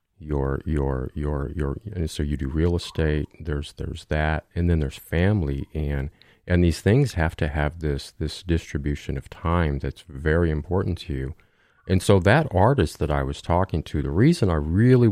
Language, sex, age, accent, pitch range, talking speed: English, male, 40-59, American, 75-90 Hz, 185 wpm